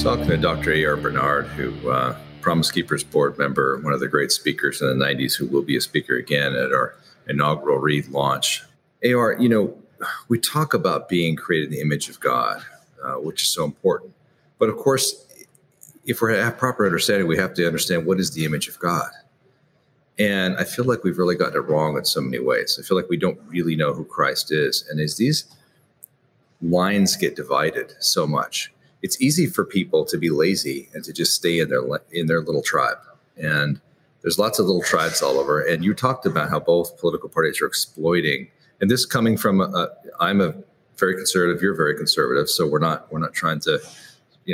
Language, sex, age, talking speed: English, male, 40-59, 205 wpm